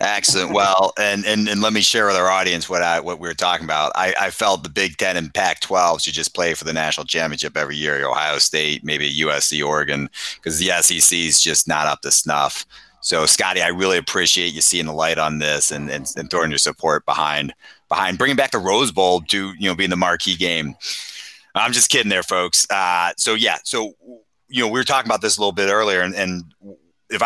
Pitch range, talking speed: 80-95 Hz, 230 wpm